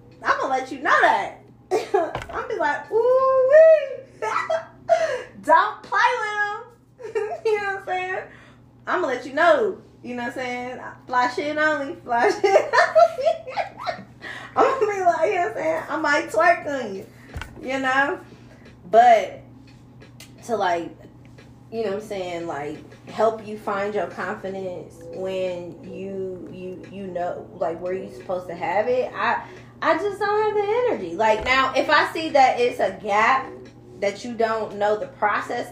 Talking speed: 170 wpm